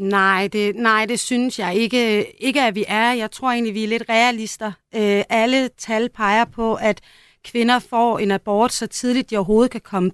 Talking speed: 200 wpm